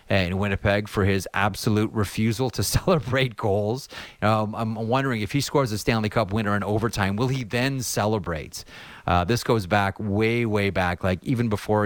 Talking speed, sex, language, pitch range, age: 175 wpm, male, English, 95-115 Hz, 30-49